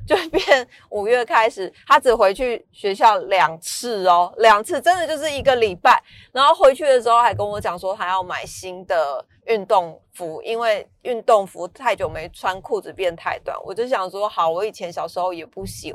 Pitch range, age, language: 175-230 Hz, 20-39, Chinese